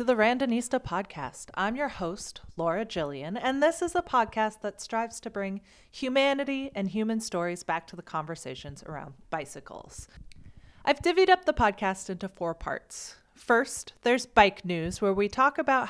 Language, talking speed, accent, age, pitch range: English, 165 wpm, American, 30-49, 175-250 Hz